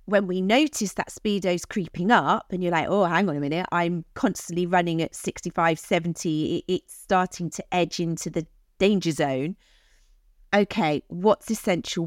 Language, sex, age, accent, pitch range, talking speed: English, female, 40-59, British, 170-215 Hz, 160 wpm